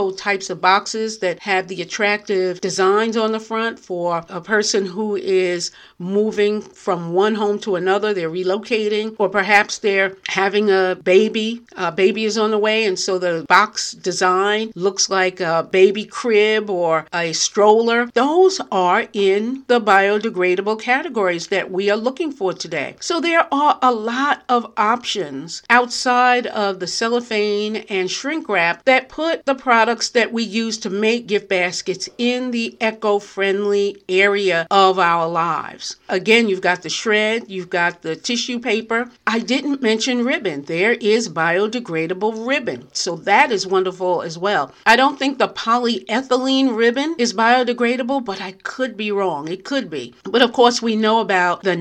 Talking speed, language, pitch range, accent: 160 wpm, English, 185-230 Hz, American